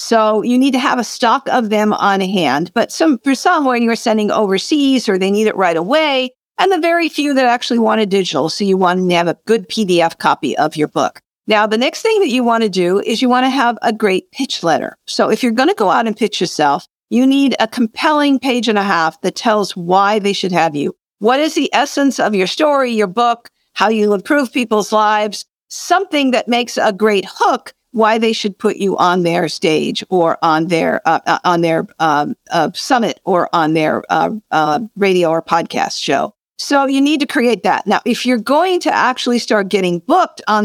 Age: 50-69